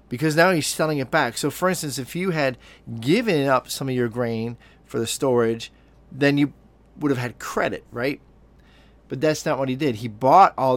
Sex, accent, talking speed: male, American, 205 wpm